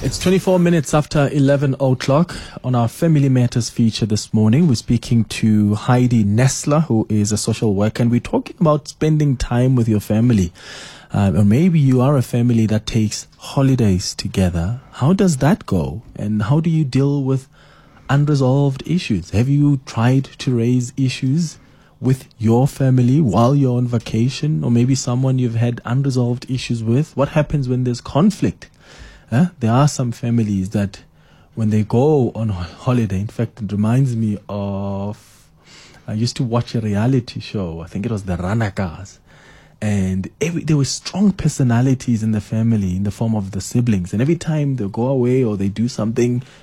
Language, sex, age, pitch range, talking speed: English, male, 20-39, 110-140 Hz, 175 wpm